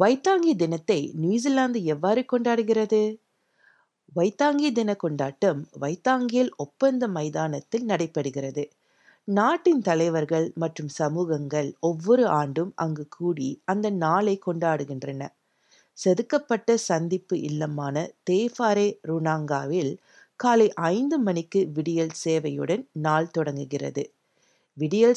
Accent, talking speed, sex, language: native, 85 wpm, female, Tamil